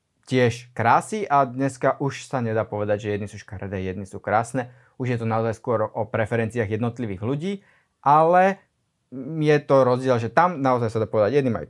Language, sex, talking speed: Slovak, male, 185 wpm